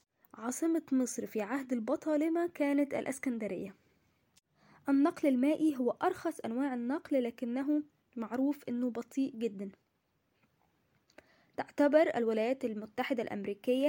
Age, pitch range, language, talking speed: 10-29, 240-290 Hz, Arabic, 95 wpm